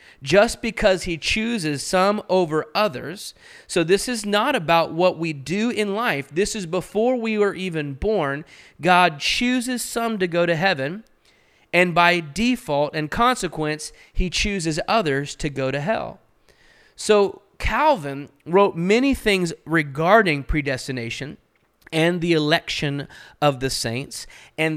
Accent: American